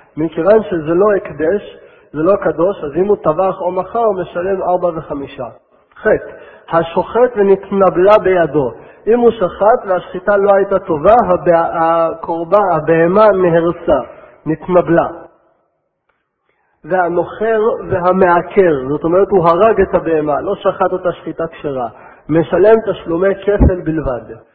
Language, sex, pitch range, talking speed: Hebrew, male, 165-200 Hz, 120 wpm